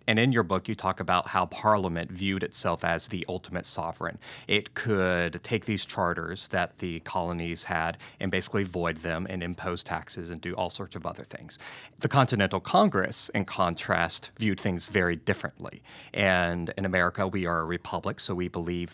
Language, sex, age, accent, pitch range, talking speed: English, male, 30-49, American, 90-105 Hz, 180 wpm